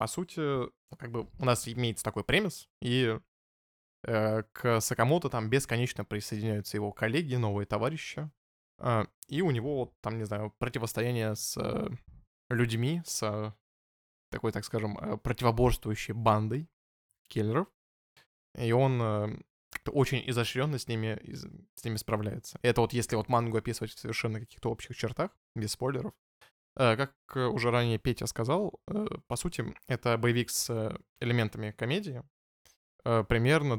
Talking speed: 130 wpm